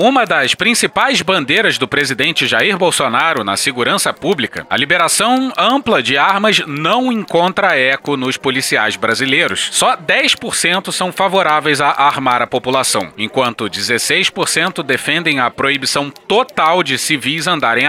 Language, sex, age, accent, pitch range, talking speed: Portuguese, male, 30-49, Brazilian, 135-185 Hz, 130 wpm